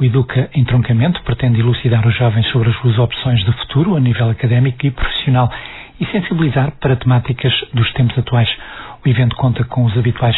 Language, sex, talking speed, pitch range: Portuguese, male, 180 wpm, 120-135 Hz